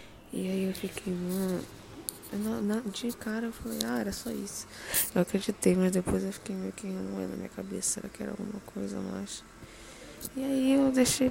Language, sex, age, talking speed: Portuguese, female, 10-29, 200 wpm